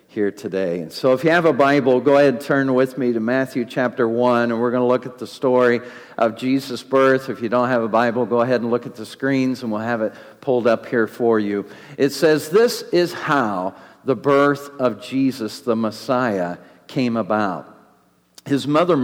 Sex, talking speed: male, 210 wpm